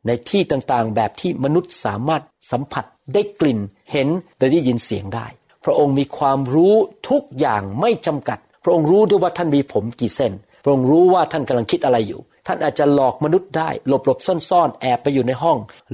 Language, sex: Thai, male